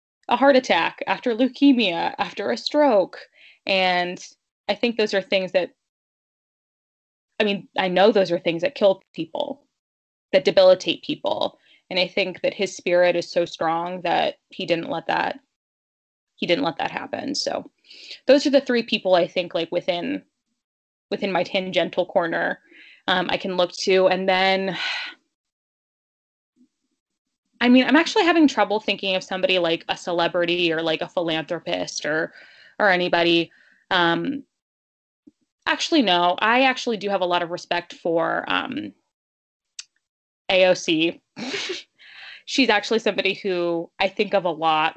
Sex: female